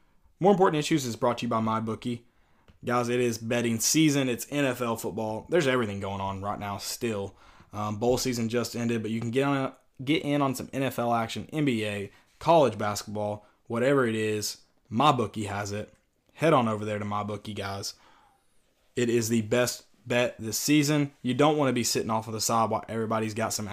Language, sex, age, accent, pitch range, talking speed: English, male, 20-39, American, 110-130 Hz, 200 wpm